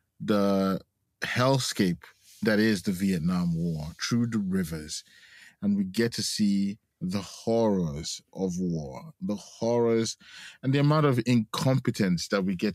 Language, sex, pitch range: English, male, 105-125 Hz